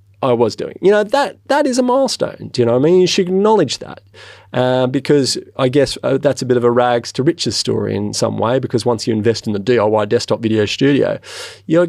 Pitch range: 105-135 Hz